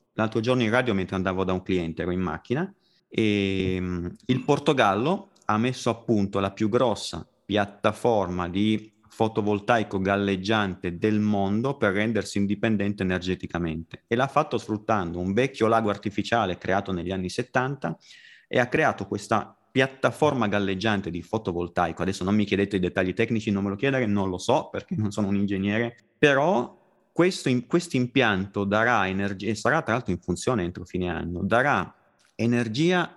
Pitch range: 95-125 Hz